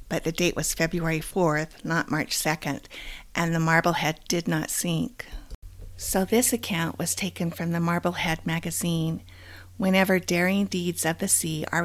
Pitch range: 155-180 Hz